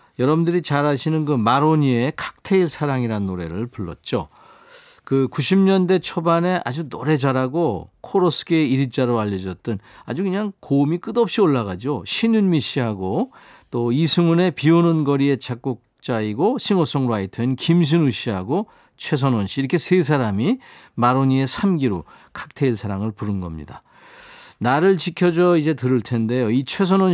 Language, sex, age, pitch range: Korean, male, 40-59, 115-170 Hz